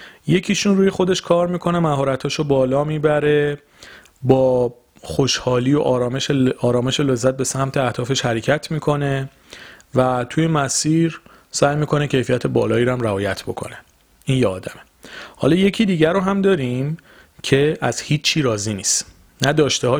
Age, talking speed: 40-59, 130 wpm